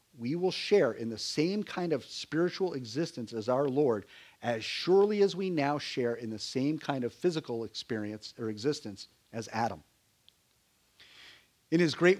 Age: 50-69